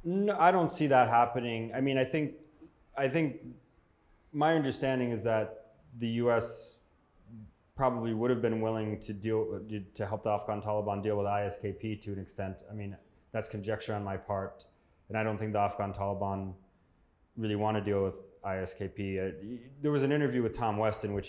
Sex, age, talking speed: male, 20-39, 185 wpm